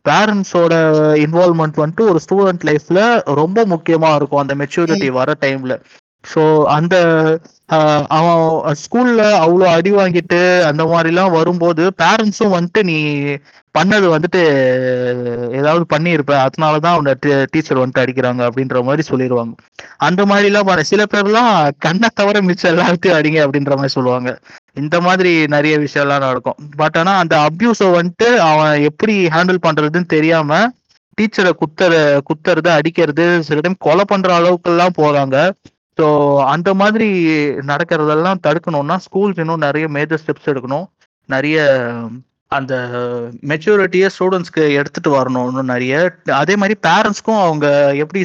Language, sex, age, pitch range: Tamil, male, 20-39, 145-180 Hz